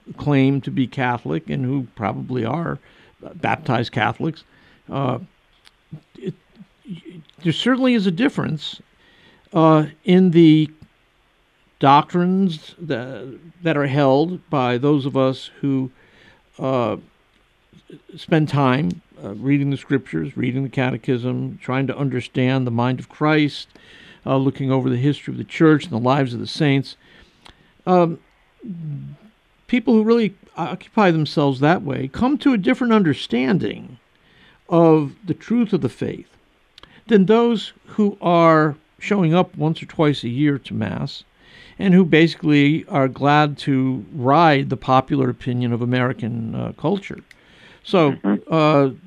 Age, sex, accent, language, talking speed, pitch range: 50-69, male, American, English, 135 wpm, 130-170 Hz